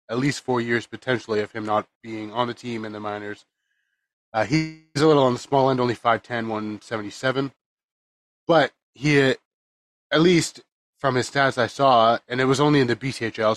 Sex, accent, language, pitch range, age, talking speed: male, American, English, 110-125 Hz, 20-39, 185 wpm